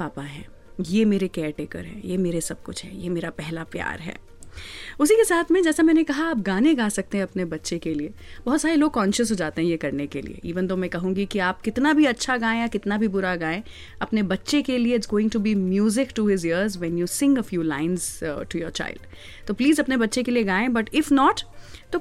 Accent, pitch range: native, 190-290 Hz